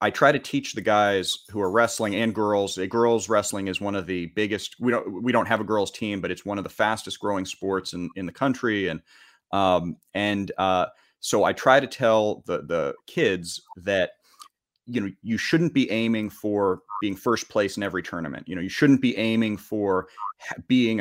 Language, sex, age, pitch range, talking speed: English, male, 30-49, 100-115 Hz, 210 wpm